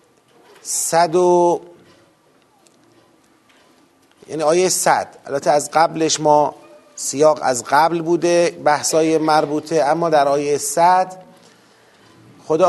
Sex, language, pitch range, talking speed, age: male, Persian, 140-180 Hz, 90 wpm, 40-59